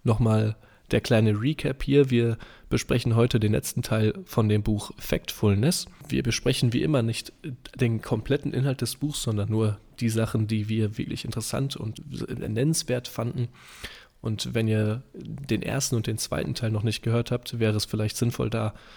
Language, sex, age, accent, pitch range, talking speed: German, male, 10-29, German, 110-125 Hz, 170 wpm